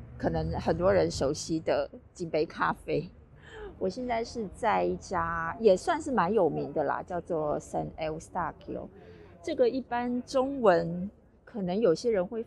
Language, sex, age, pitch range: Chinese, female, 30-49, 175-235 Hz